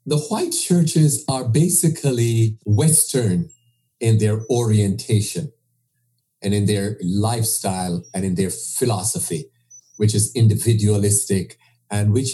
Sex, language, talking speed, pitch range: male, English, 105 wpm, 105-135 Hz